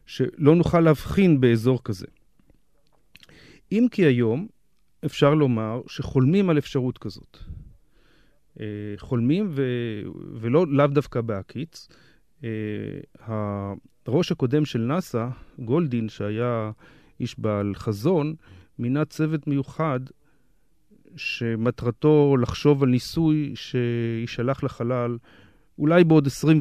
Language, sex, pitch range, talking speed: Hebrew, male, 115-150 Hz, 90 wpm